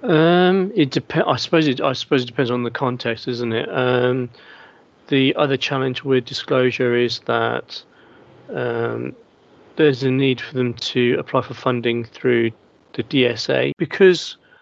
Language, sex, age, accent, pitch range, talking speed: English, male, 40-59, British, 120-140 Hz, 155 wpm